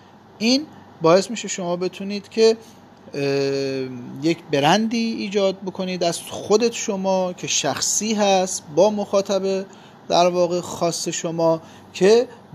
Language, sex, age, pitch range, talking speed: Persian, male, 40-59, 140-190 Hz, 110 wpm